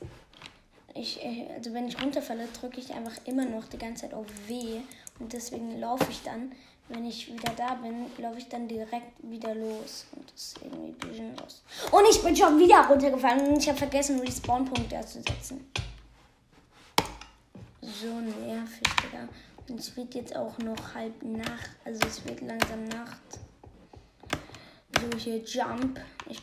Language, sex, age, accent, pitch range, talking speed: German, female, 20-39, German, 230-265 Hz, 160 wpm